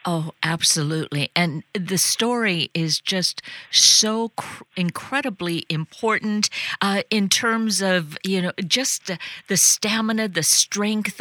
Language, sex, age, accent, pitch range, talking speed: English, female, 50-69, American, 160-200 Hz, 125 wpm